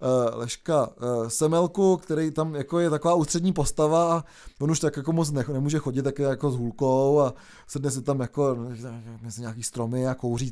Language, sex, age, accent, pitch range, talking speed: Czech, male, 20-39, native, 135-160 Hz, 175 wpm